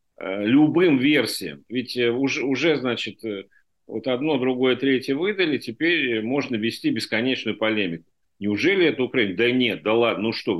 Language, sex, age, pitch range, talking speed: Russian, male, 50-69, 105-135 Hz, 135 wpm